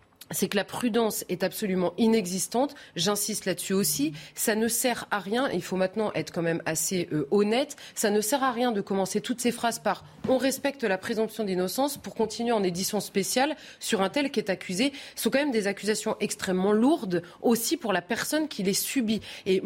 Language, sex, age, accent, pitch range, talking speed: French, female, 30-49, French, 185-250 Hz, 205 wpm